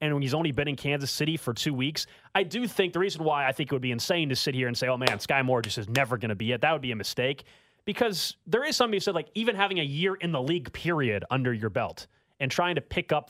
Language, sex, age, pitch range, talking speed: English, male, 30-49, 125-165 Hz, 300 wpm